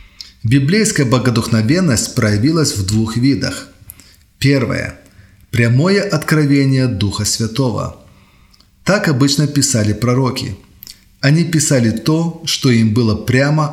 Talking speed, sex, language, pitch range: 95 wpm, male, Russian, 105-145 Hz